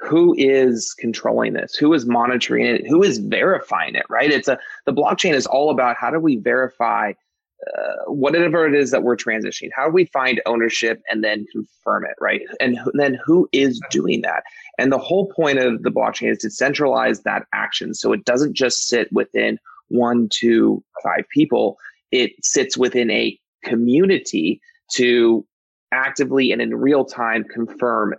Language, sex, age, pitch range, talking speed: English, male, 30-49, 120-155 Hz, 170 wpm